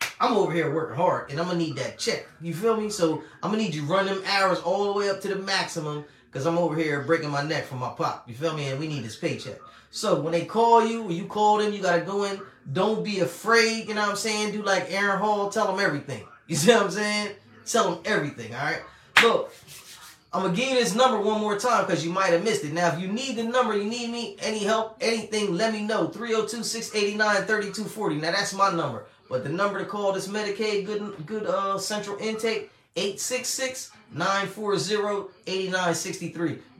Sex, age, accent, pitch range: male, 20-39, American, 165-215 Hz